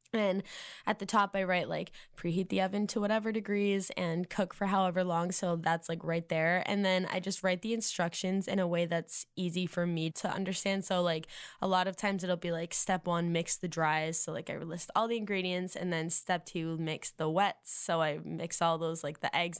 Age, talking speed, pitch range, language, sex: 10-29, 235 wpm, 170-200 Hz, English, female